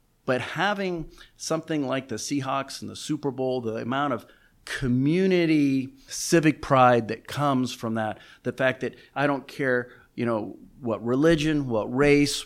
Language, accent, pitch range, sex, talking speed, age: English, American, 120-150 Hz, male, 155 wpm, 40-59